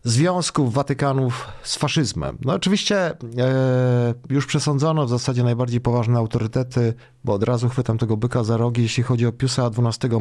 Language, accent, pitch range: Polish, native, 120-140 Hz